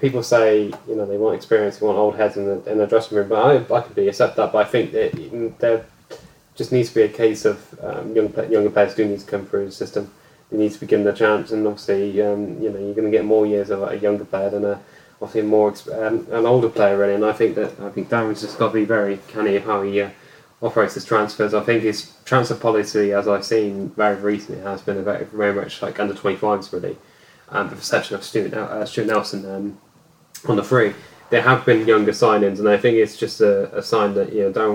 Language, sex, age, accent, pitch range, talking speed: English, male, 10-29, British, 100-115 Hz, 260 wpm